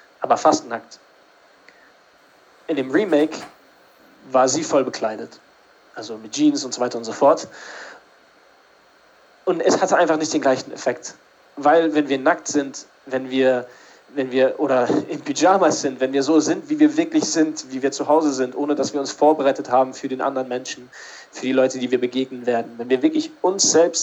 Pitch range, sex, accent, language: 130-150 Hz, male, German, German